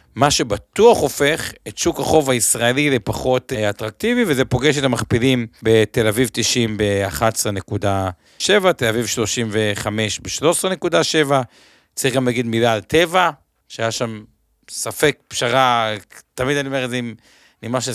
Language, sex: Hebrew, male